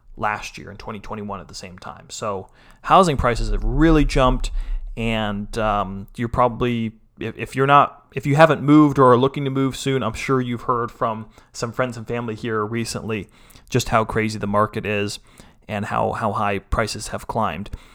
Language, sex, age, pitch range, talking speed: English, male, 30-49, 110-135 Hz, 185 wpm